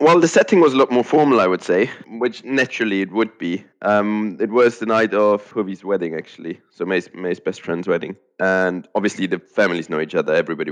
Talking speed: 220 wpm